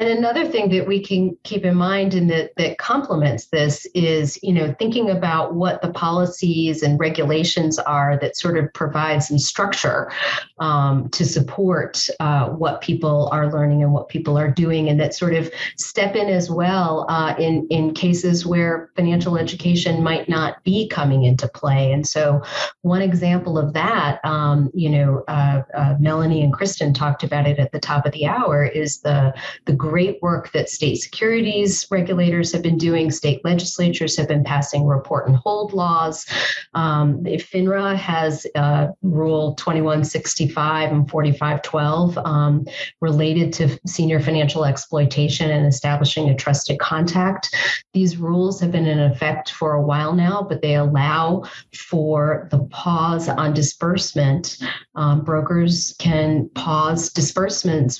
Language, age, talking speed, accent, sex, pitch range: English, 40-59, 155 wpm, American, female, 150-175 Hz